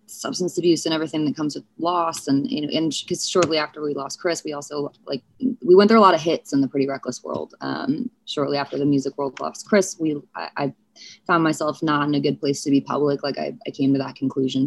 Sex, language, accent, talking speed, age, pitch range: female, English, American, 245 wpm, 20-39, 140-165 Hz